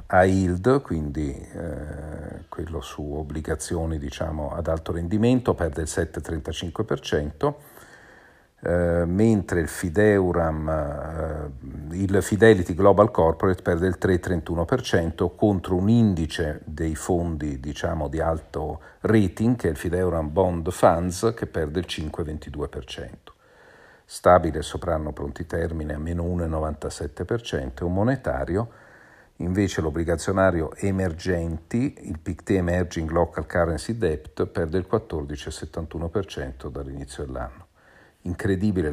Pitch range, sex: 80-95 Hz, male